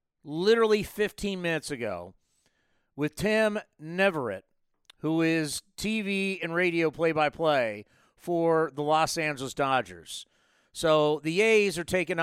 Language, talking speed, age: English, 115 wpm, 40-59